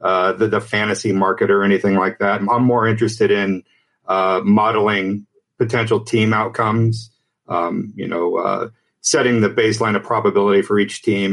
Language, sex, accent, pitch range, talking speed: English, male, American, 95-115 Hz, 160 wpm